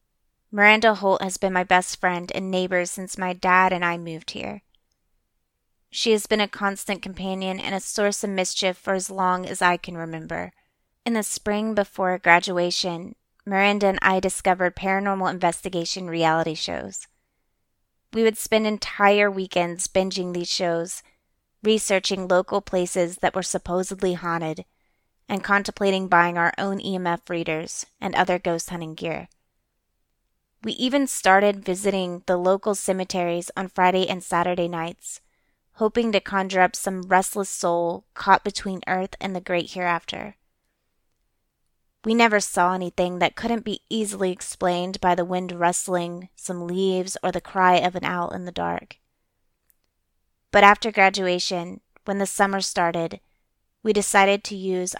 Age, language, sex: 30-49, English, female